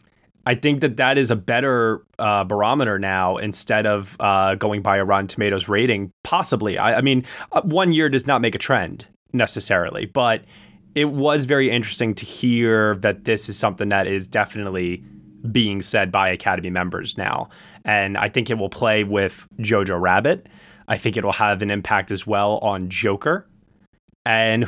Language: English